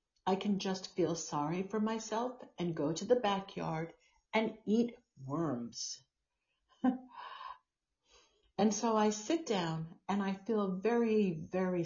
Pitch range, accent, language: 160-215 Hz, American, English